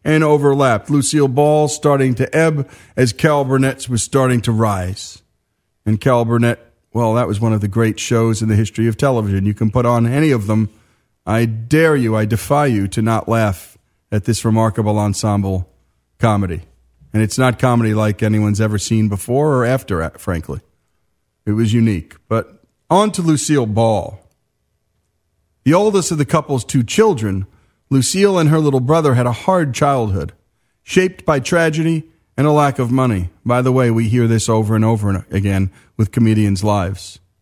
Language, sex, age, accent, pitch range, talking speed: English, male, 40-59, American, 105-140 Hz, 175 wpm